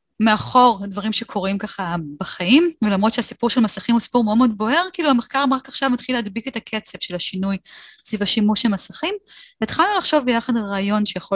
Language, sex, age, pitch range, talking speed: Hebrew, female, 20-39, 195-255 Hz, 180 wpm